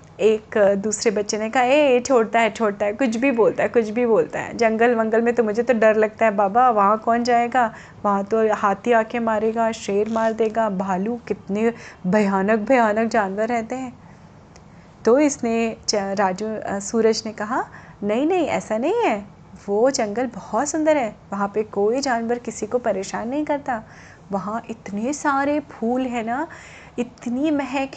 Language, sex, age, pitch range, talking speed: Hindi, female, 30-49, 215-270 Hz, 170 wpm